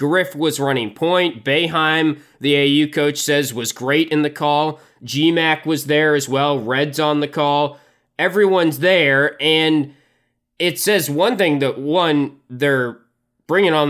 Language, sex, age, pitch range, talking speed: English, male, 20-39, 145-170 Hz, 150 wpm